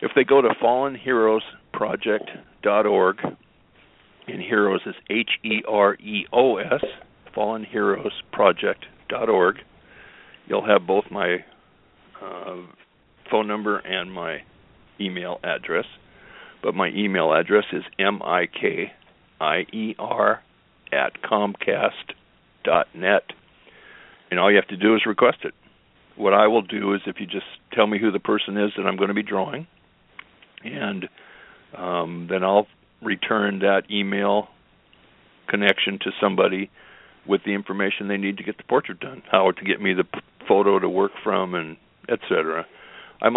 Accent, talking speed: American, 125 wpm